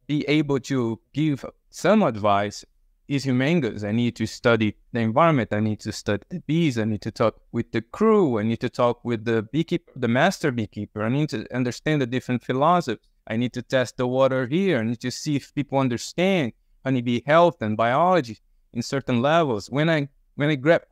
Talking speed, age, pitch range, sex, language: 200 wpm, 20-39, 115-160 Hz, male, English